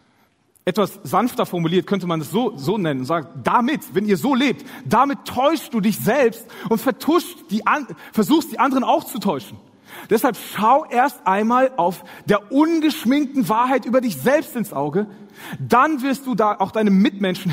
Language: German